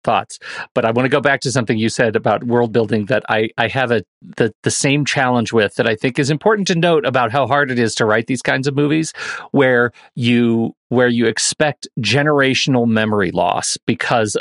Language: English